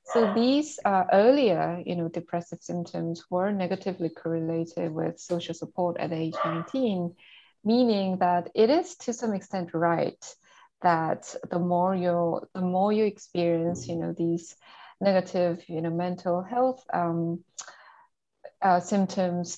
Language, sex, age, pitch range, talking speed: English, female, 20-39, 170-220 Hz, 135 wpm